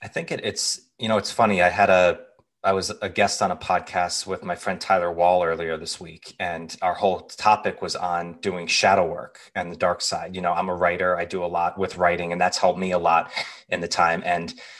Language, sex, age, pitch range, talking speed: English, male, 30-49, 90-105 Hz, 245 wpm